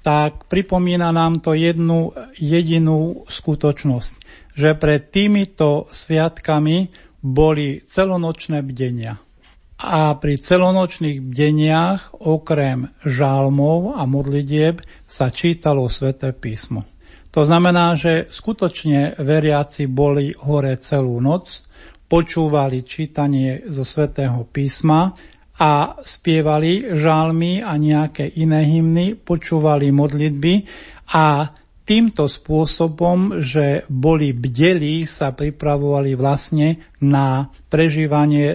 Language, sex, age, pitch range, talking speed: Slovak, male, 50-69, 140-165 Hz, 95 wpm